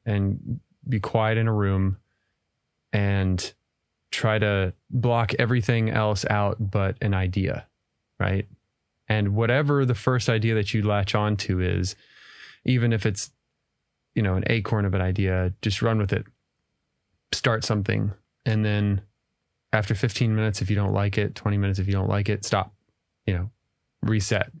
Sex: male